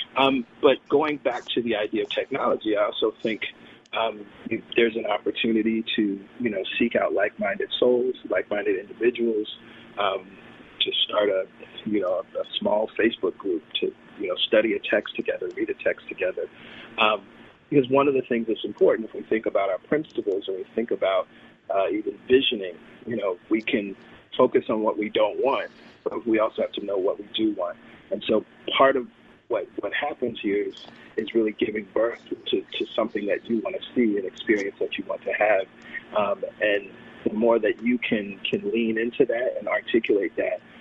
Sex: male